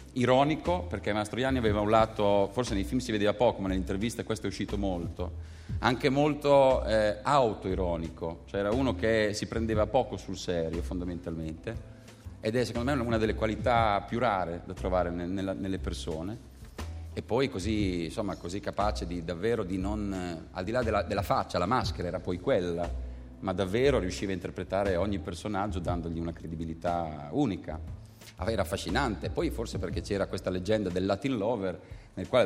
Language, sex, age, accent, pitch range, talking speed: Italian, male, 40-59, native, 90-115 Hz, 170 wpm